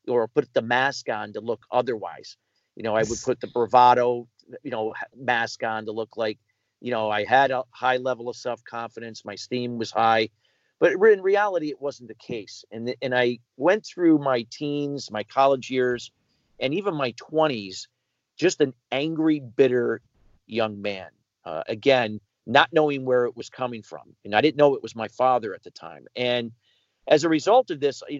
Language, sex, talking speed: English, male, 190 wpm